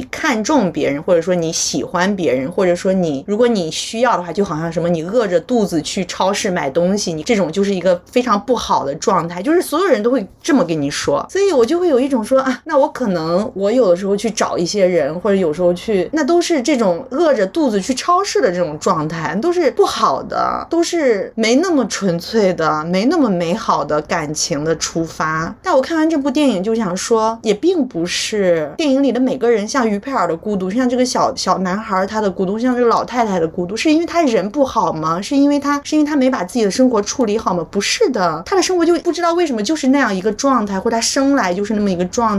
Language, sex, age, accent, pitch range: Chinese, female, 30-49, native, 185-270 Hz